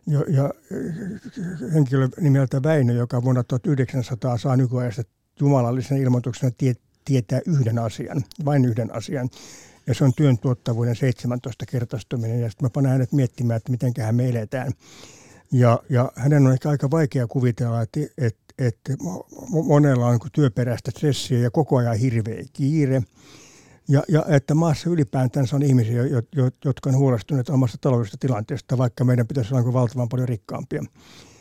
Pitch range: 125-140 Hz